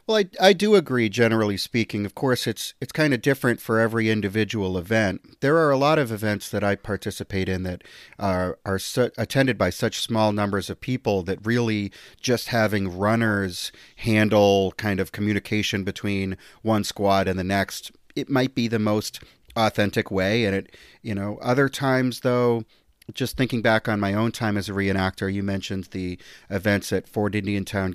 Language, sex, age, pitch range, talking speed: English, male, 40-59, 100-130 Hz, 185 wpm